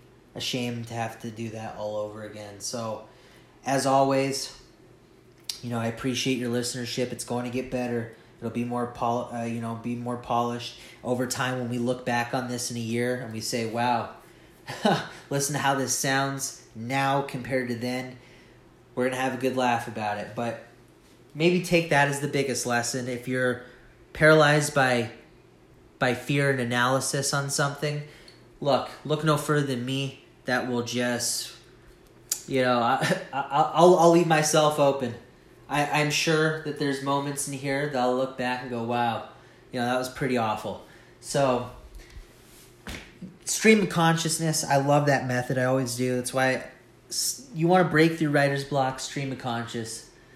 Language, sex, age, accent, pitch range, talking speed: English, male, 30-49, American, 120-140 Hz, 175 wpm